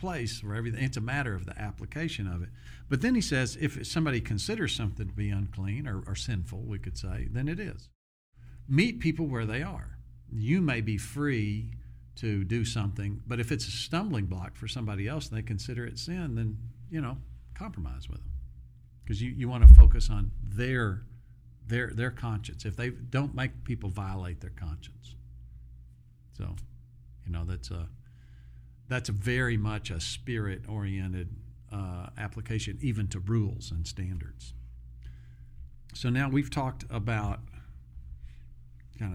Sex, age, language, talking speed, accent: male, 50-69, English, 160 wpm, American